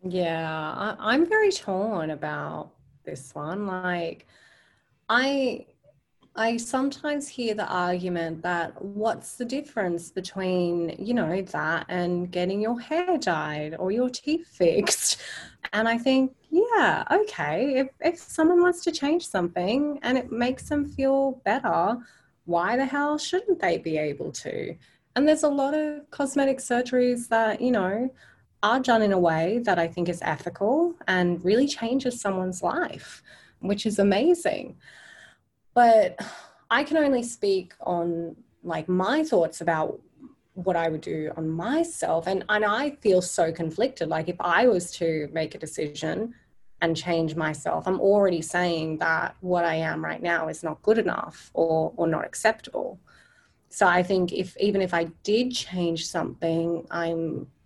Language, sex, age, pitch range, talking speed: English, female, 20-39, 170-265 Hz, 155 wpm